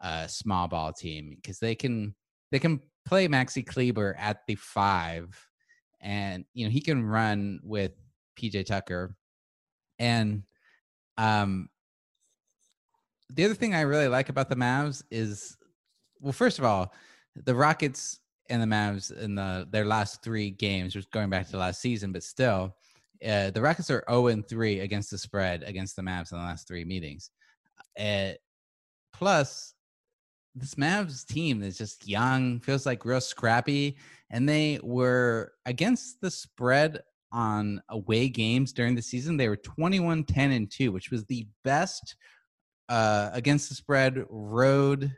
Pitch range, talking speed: 100-135 Hz, 150 wpm